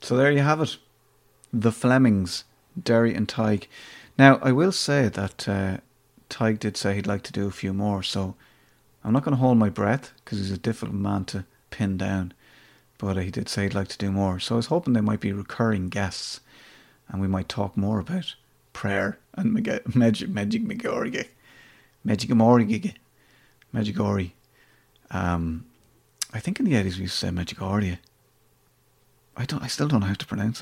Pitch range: 95-120 Hz